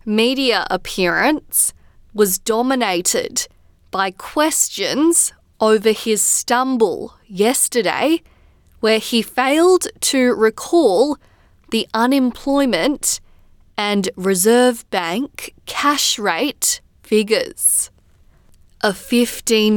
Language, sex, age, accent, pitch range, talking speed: English, female, 20-39, Australian, 195-260 Hz, 75 wpm